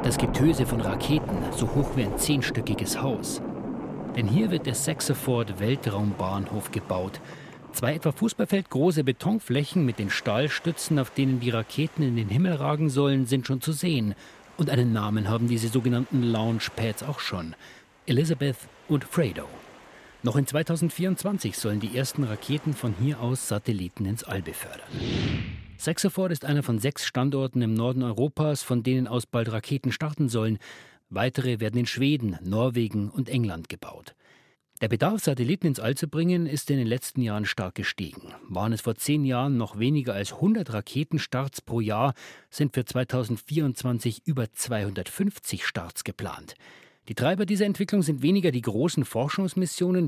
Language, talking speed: German, 155 wpm